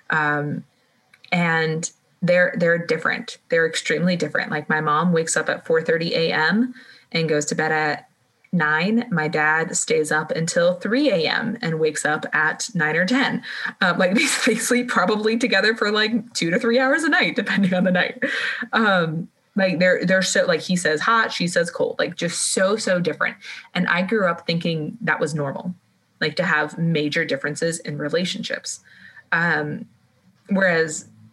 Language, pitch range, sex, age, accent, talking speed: English, 160-220 Hz, female, 20-39, American, 170 wpm